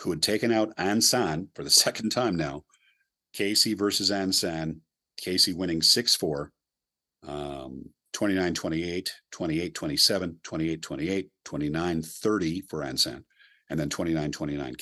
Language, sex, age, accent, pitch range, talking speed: English, male, 50-69, American, 80-100 Hz, 100 wpm